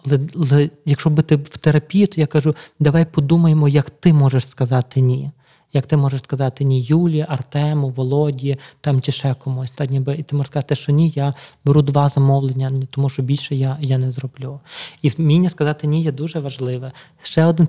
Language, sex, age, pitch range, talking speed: Ukrainian, male, 20-39, 135-150 Hz, 185 wpm